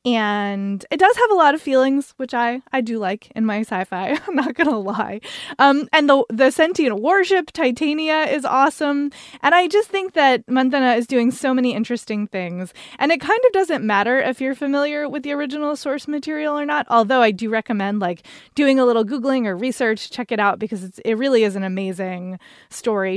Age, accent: 20-39, American